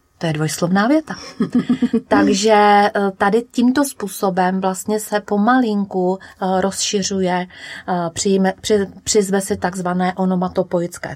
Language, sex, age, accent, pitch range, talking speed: Czech, female, 30-49, native, 175-210 Hz, 80 wpm